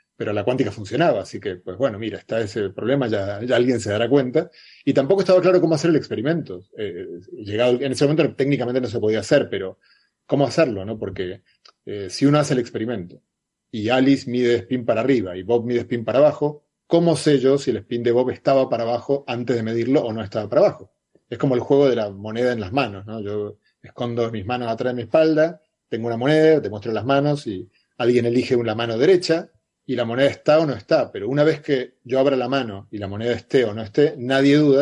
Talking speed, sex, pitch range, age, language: 230 wpm, male, 110-145 Hz, 30-49, Spanish